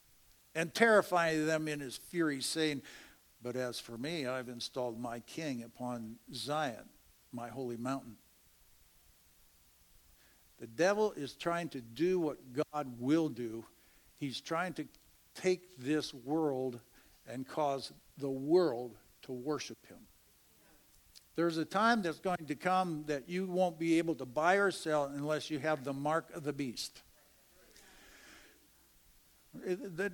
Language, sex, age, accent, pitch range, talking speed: English, male, 60-79, American, 135-185 Hz, 135 wpm